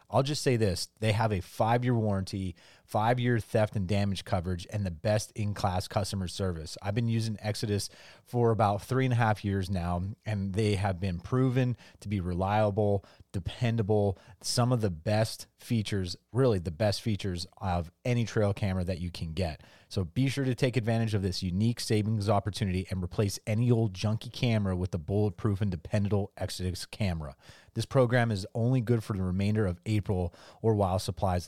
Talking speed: 185 wpm